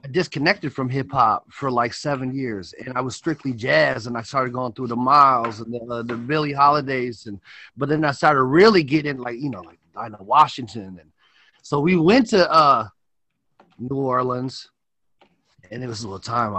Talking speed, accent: 200 wpm, American